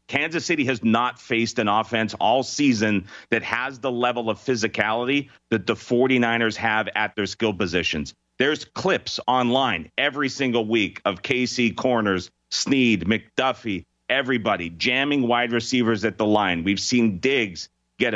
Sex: male